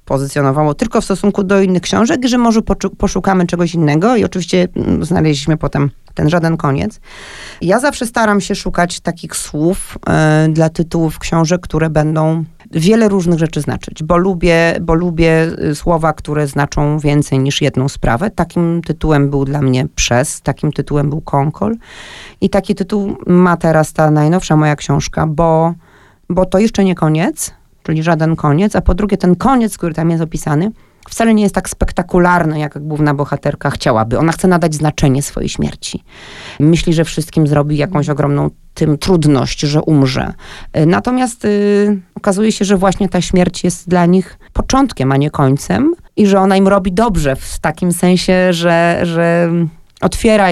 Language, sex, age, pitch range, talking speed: Polish, female, 40-59, 150-190 Hz, 160 wpm